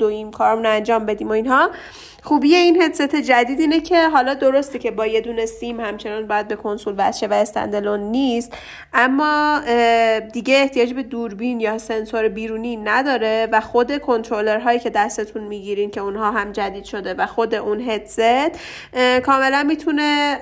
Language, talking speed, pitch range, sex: Persian, 160 wpm, 220-270 Hz, female